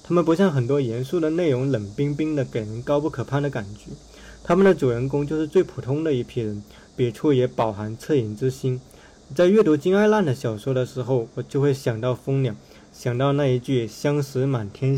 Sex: male